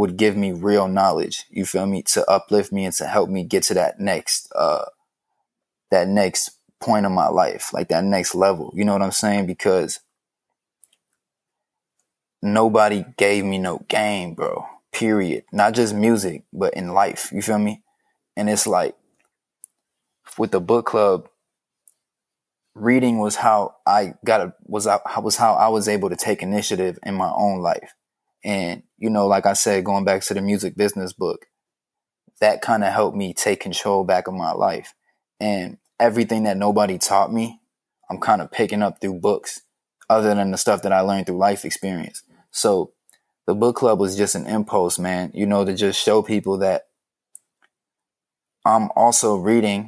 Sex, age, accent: male, 20-39, American